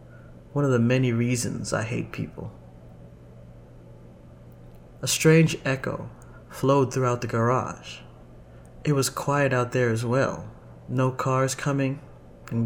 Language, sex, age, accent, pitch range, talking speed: English, male, 30-49, American, 100-130 Hz, 125 wpm